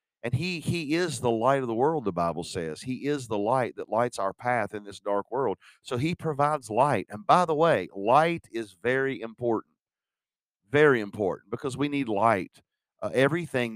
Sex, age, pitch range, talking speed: male, 50-69, 105-135 Hz, 190 wpm